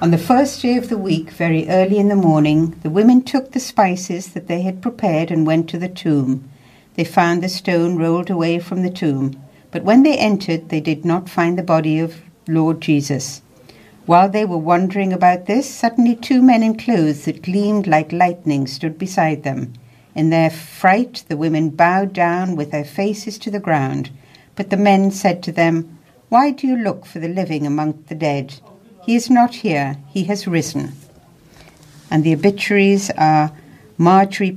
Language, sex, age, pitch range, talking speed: English, female, 60-79, 155-195 Hz, 185 wpm